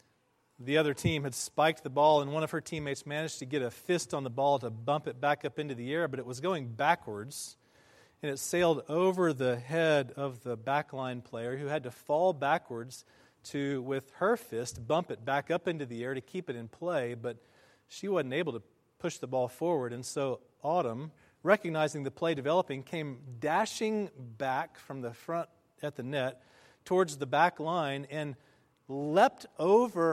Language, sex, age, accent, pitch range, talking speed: English, male, 40-59, American, 130-165 Hz, 190 wpm